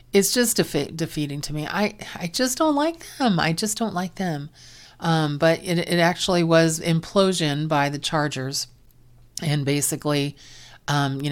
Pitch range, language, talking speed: 145-175 Hz, English, 165 wpm